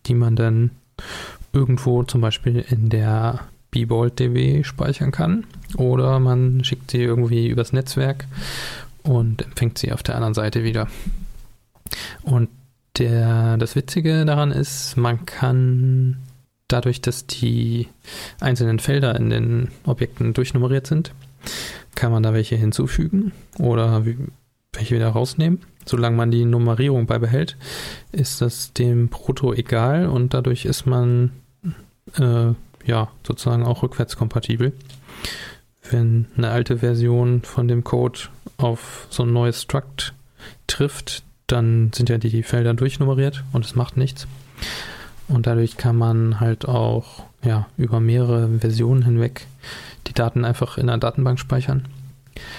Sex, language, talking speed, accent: male, German, 130 wpm, German